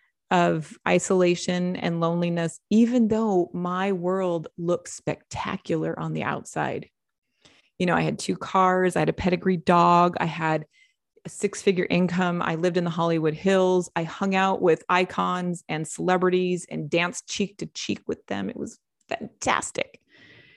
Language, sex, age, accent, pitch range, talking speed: English, female, 30-49, American, 165-190 Hz, 150 wpm